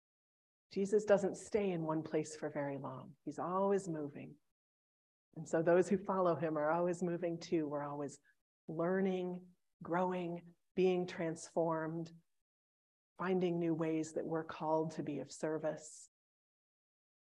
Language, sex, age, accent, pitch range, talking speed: English, female, 40-59, American, 150-190 Hz, 130 wpm